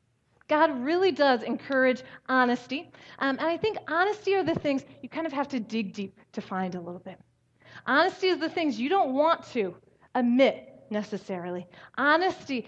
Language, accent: English, American